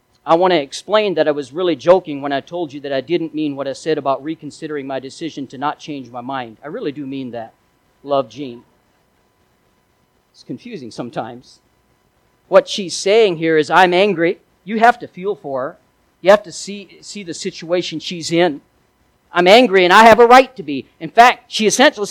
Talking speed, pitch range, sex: 200 wpm, 150-210 Hz, male